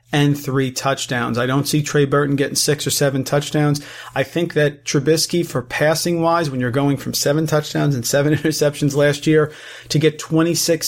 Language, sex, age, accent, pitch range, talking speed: English, male, 40-59, American, 135-155 Hz, 190 wpm